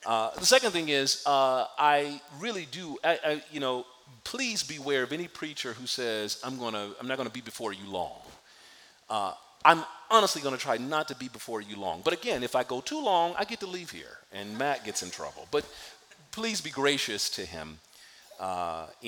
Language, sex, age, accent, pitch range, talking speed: English, male, 40-59, American, 95-130 Hz, 210 wpm